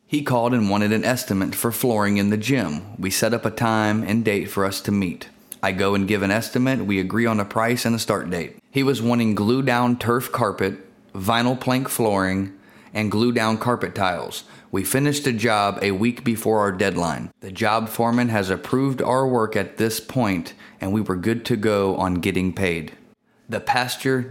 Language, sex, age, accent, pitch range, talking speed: English, male, 30-49, American, 100-125 Hz, 200 wpm